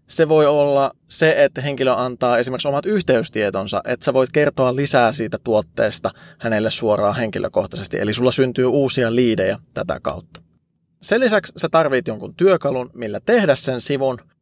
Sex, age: male, 20-39